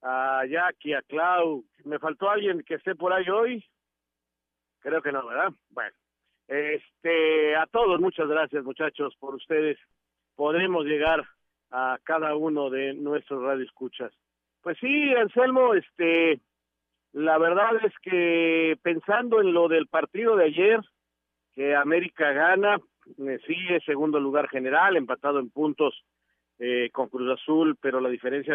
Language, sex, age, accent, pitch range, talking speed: Spanish, male, 50-69, Mexican, 130-165 Hz, 140 wpm